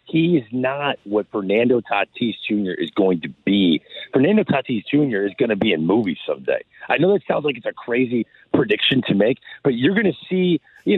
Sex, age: male, 40-59